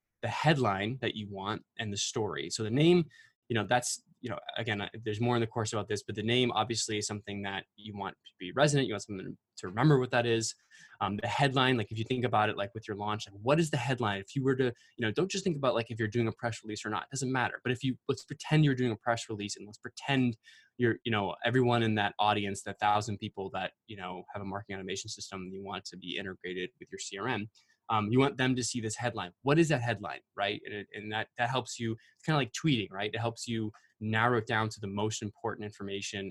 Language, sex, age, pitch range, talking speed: English, male, 20-39, 105-125 Hz, 265 wpm